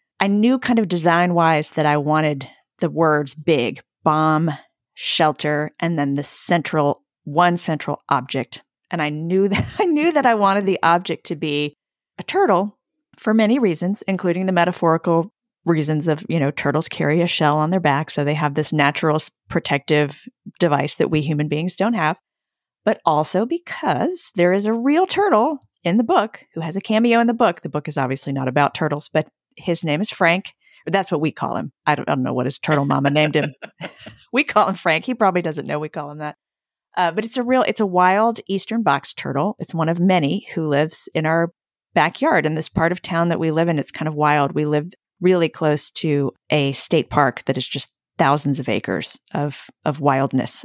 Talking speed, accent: 205 wpm, American